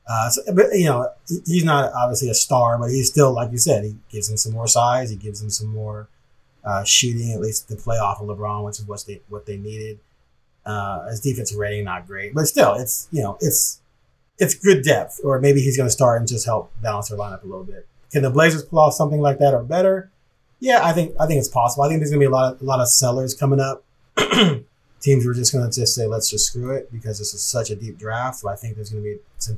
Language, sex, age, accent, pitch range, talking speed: English, male, 30-49, American, 110-145 Hz, 260 wpm